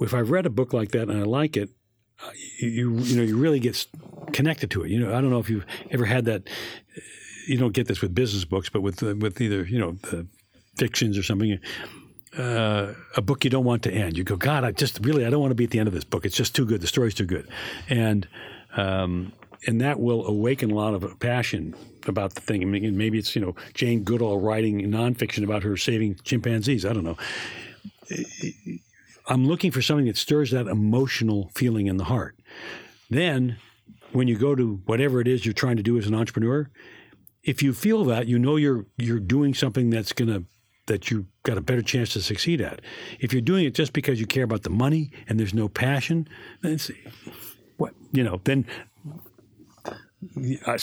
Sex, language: male, Finnish